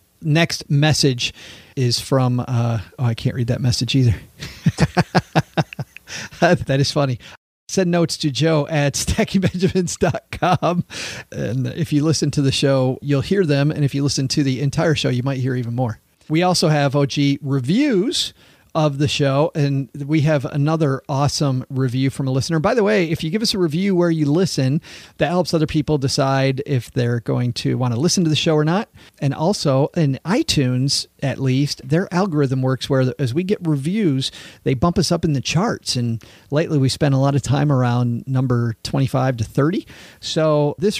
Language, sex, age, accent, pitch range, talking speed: English, male, 40-59, American, 130-165 Hz, 185 wpm